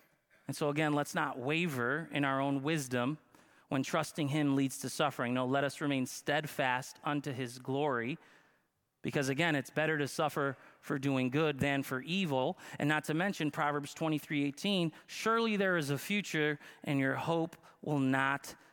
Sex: male